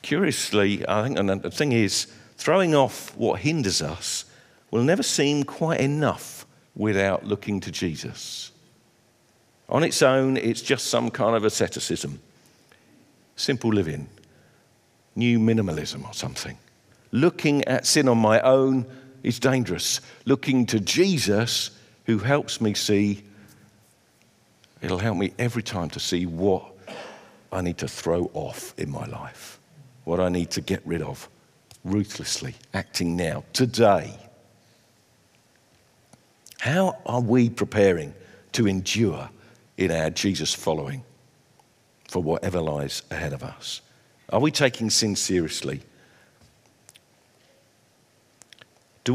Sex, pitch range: male, 95-130 Hz